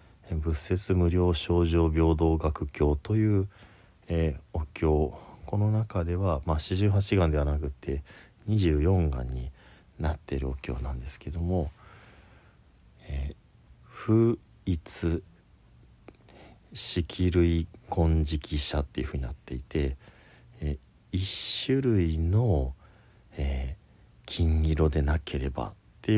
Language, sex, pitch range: Japanese, male, 75-100 Hz